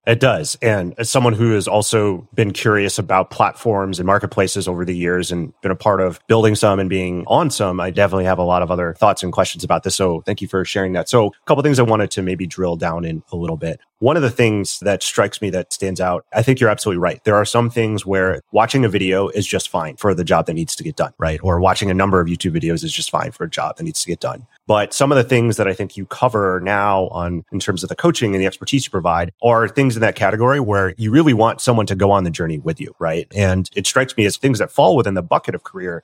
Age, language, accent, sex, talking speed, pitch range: 30-49, English, American, male, 275 wpm, 90-110 Hz